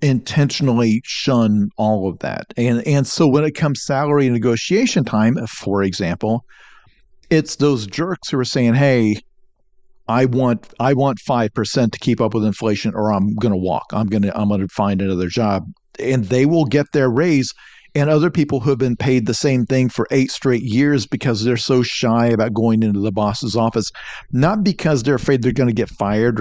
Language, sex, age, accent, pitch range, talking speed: English, male, 50-69, American, 115-145 Hz, 195 wpm